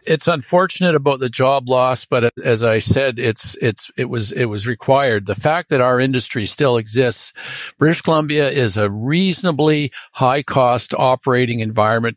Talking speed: 165 wpm